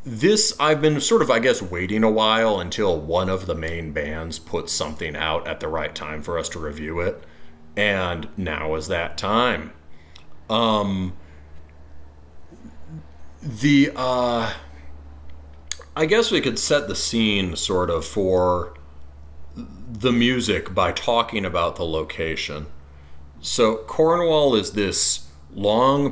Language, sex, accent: English, male, American